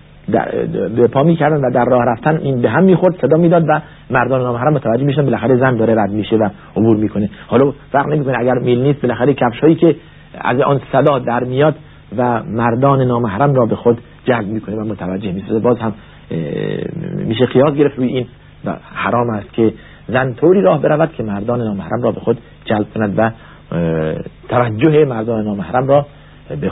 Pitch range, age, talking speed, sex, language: 105-140 Hz, 50-69, 180 wpm, male, Persian